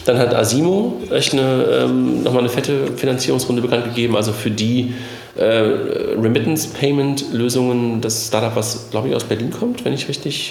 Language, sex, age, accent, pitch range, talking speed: German, male, 40-59, German, 105-125 Hz, 165 wpm